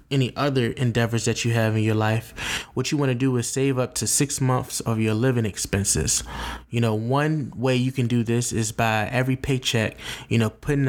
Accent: American